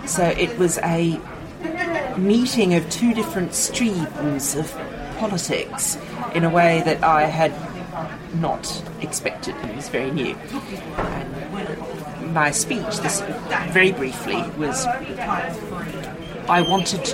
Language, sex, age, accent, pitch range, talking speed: English, female, 40-59, British, 155-185 Hz, 110 wpm